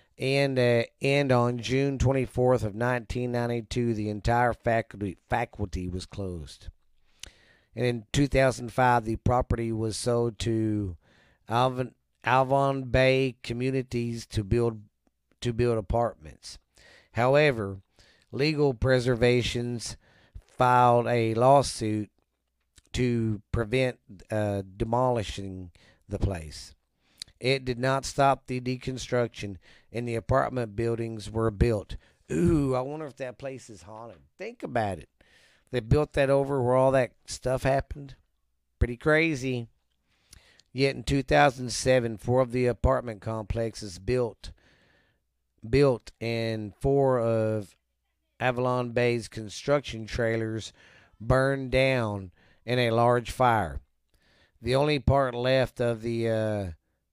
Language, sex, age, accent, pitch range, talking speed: English, male, 40-59, American, 105-130 Hz, 110 wpm